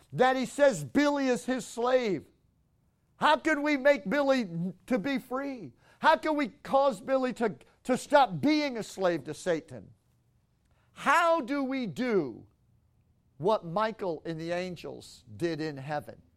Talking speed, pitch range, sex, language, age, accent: 145 wpm, 150-245 Hz, male, English, 50-69, American